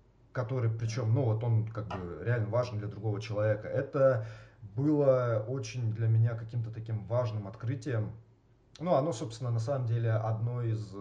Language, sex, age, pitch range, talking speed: Russian, male, 20-39, 110-120 Hz, 160 wpm